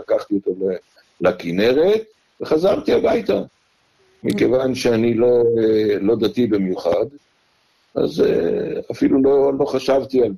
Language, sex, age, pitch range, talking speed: Hebrew, male, 60-79, 105-160 Hz, 100 wpm